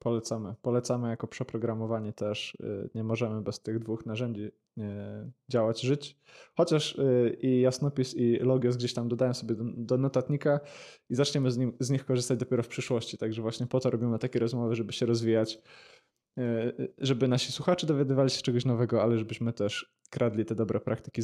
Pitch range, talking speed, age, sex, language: 120-145 Hz, 165 wpm, 20-39, male, Polish